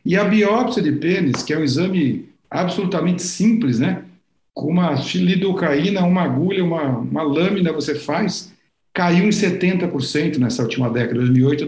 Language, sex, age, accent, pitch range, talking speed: Portuguese, male, 60-79, Brazilian, 145-185 Hz, 155 wpm